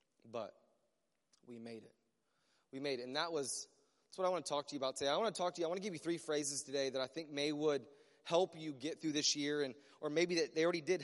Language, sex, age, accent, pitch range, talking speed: English, male, 30-49, American, 165-225 Hz, 285 wpm